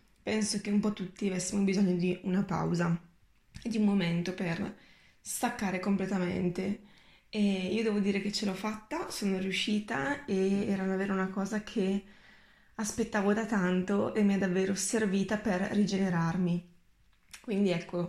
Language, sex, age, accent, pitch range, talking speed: Italian, female, 20-39, native, 195-220 Hz, 150 wpm